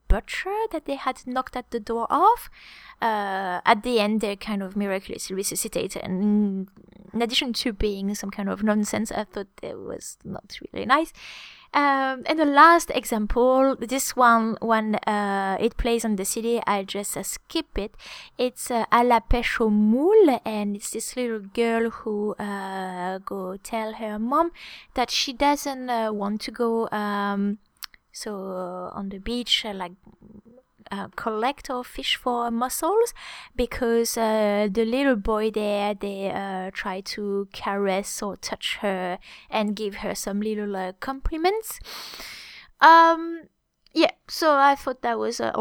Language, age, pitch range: English, 20-39, 205-260 Hz